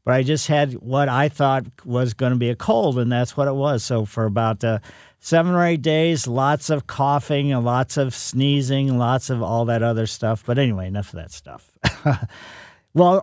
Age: 50-69